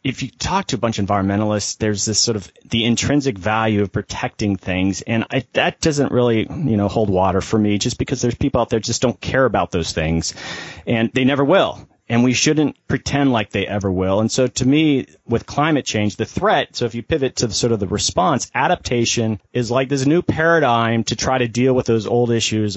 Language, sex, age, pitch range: English, male, 40-59, 105-130 Hz